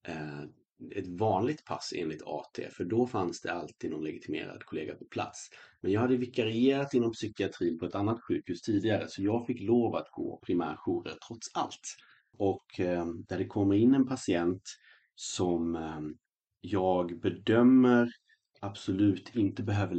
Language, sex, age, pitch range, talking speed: Swedish, male, 30-49, 85-115 Hz, 145 wpm